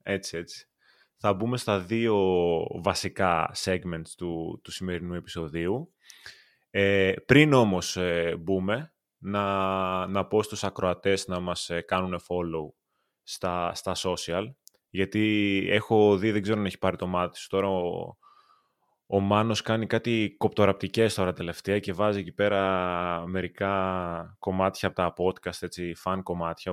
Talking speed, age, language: 130 wpm, 20-39, Greek